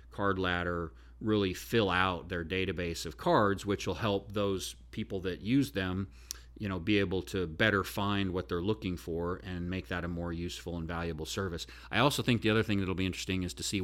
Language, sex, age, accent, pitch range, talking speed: English, male, 40-59, American, 85-100 Hz, 215 wpm